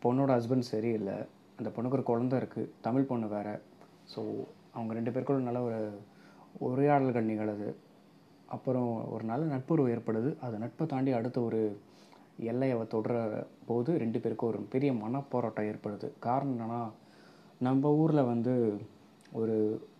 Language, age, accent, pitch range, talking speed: Tamil, 20-39, native, 110-135 Hz, 130 wpm